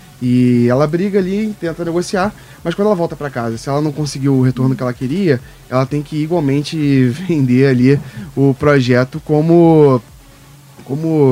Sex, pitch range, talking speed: male, 130-155 Hz, 165 wpm